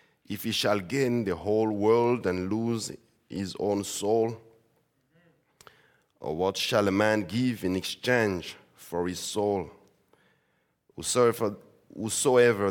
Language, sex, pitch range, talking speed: English, male, 85-105 Hz, 115 wpm